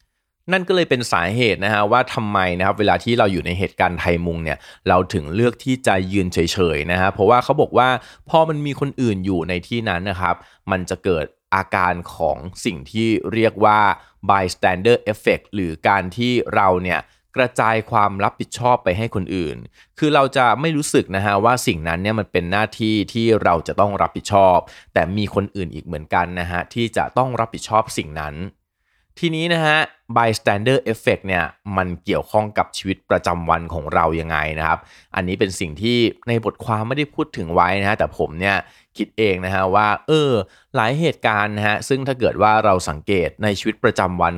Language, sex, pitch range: Thai, male, 90-120 Hz